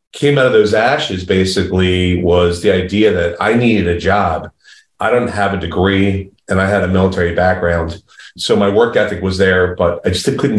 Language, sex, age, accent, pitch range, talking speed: English, male, 40-59, American, 90-105 Hz, 200 wpm